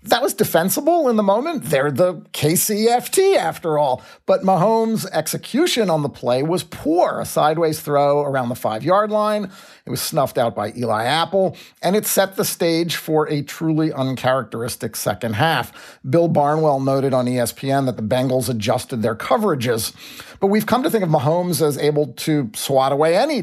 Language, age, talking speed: English, 40-59, 175 wpm